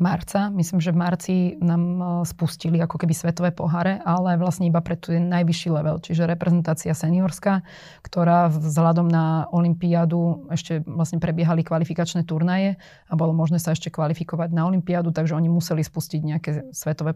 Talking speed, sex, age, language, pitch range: 150 wpm, female, 20-39, Slovak, 155-170 Hz